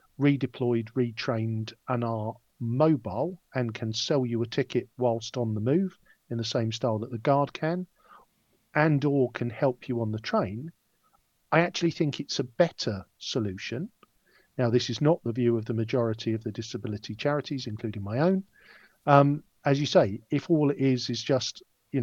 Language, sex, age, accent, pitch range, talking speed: English, male, 50-69, British, 115-145 Hz, 175 wpm